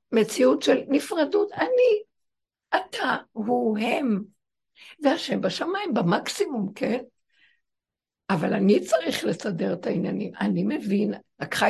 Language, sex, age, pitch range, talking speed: Hebrew, female, 60-79, 200-285 Hz, 105 wpm